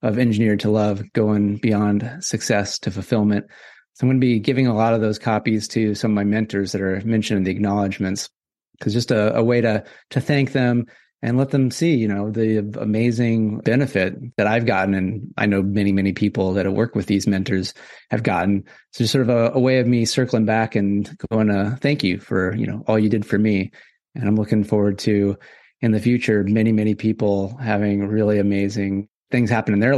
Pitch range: 105-120 Hz